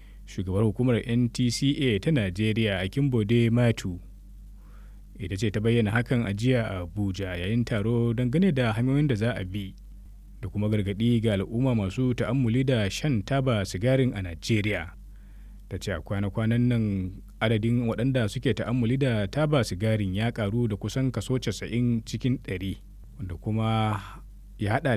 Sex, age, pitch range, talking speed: male, 20-39, 100-125 Hz, 145 wpm